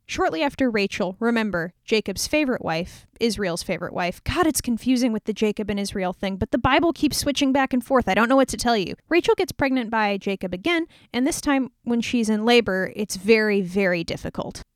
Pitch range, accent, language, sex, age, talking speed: 195-250 Hz, American, English, female, 10-29, 205 wpm